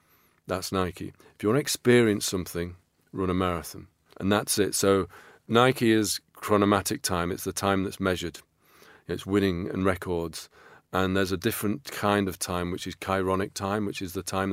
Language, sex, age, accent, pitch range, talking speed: English, male, 40-59, British, 90-100 Hz, 180 wpm